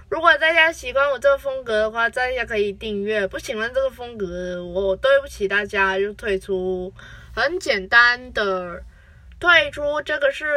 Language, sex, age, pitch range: Chinese, female, 20-39, 205-295 Hz